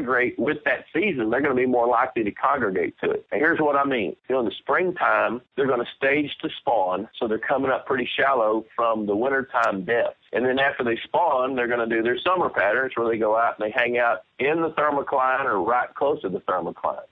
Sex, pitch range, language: male, 115-145 Hz, English